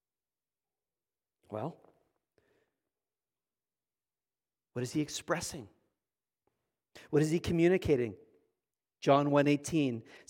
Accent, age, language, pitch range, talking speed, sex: American, 40-59, English, 150-220 Hz, 65 wpm, male